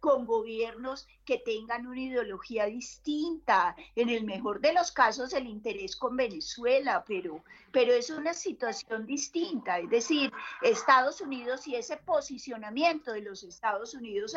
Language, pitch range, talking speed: Spanish, 220-300 Hz, 140 wpm